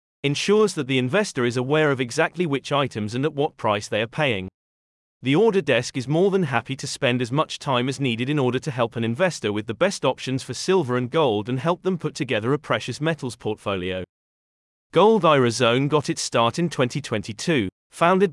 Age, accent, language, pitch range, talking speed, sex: 30-49, British, English, 115-155 Hz, 205 wpm, male